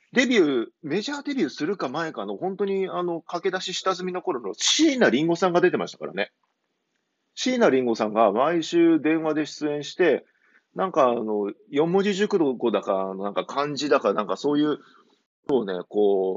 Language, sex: Japanese, male